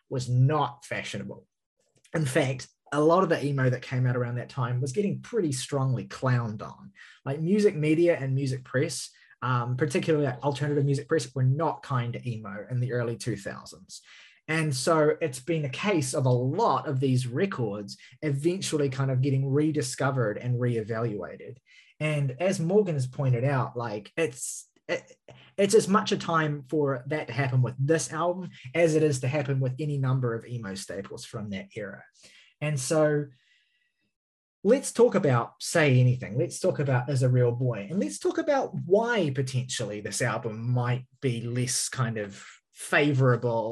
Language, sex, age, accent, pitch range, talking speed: English, male, 20-39, Australian, 125-165 Hz, 170 wpm